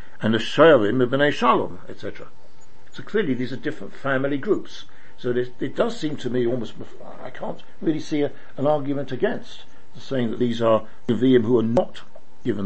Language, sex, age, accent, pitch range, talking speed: English, male, 60-79, British, 105-135 Hz, 195 wpm